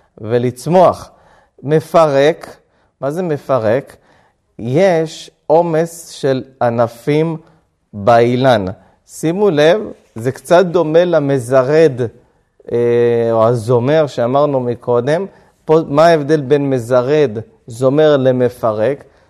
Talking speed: 85 wpm